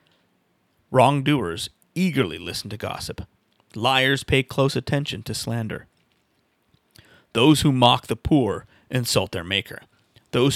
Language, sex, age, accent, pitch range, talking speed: English, male, 30-49, American, 110-140 Hz, 115 wpm